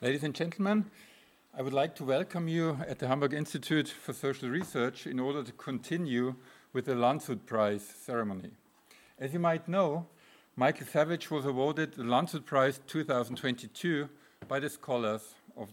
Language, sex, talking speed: German, male, 155 wpm